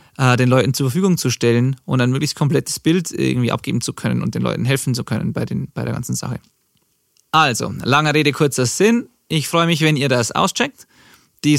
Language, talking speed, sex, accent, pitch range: German, 200 wpm, male, German, 130-155 Hz